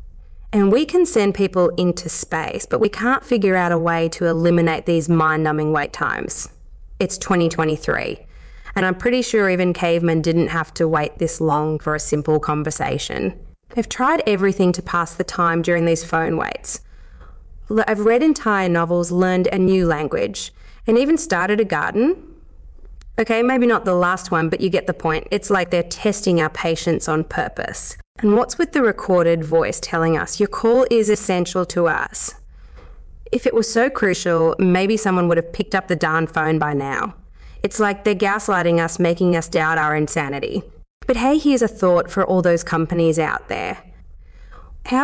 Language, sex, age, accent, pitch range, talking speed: English, female, 20-39, Australian, 165-210 Hz, 175 wpm